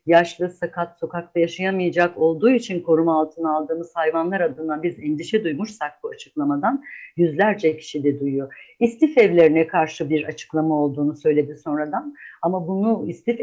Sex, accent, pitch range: female, native, 160-195 Hz